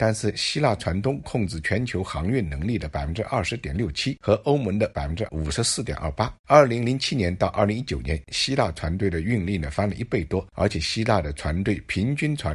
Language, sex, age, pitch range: Chinese, male, 50-69, 80-110 Hz